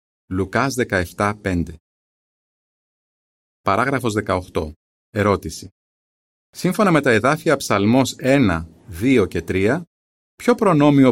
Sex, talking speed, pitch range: male, 85 wpm, 95-135 Hz